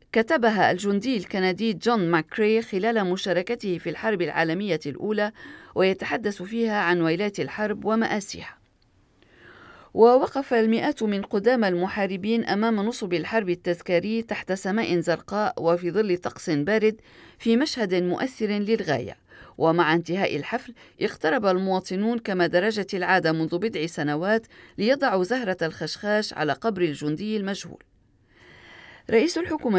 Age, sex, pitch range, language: 40-59, female, 175-225 Hz, Arabic